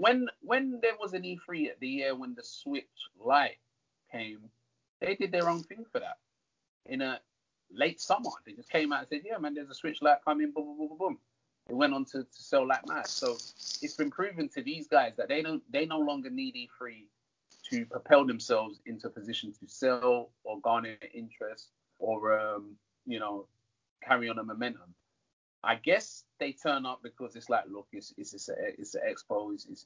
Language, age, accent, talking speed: English, 30-49, British, 205 wpm